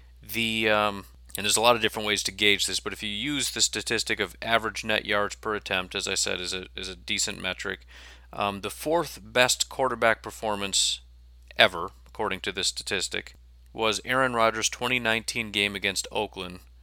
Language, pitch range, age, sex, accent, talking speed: English, 90-115 Hz, 30-49, male, American, 180 wpm